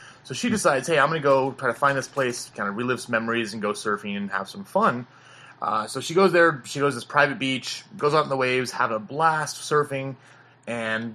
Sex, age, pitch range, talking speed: male, 30-49, 110-140 Hz, 250 wpm